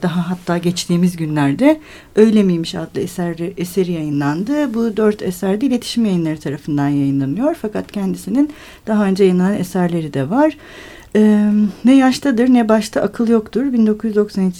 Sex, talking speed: female, 130 wpm